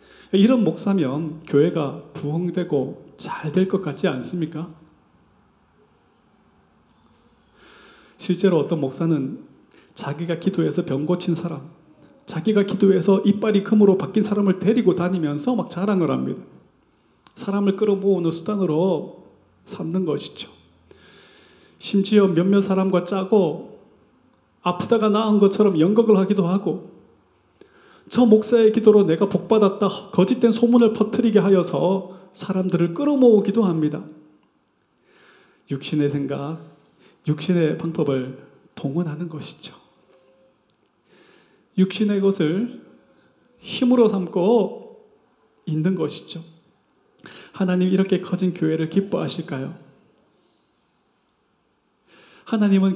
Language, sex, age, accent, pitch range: Korean, male, 30-49, native, 160-205 Hz